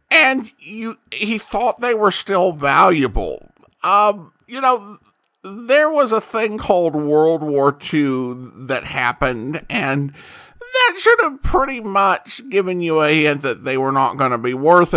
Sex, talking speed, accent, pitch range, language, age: male, 155 wpm, American, 135-220 Hz, English, 50-69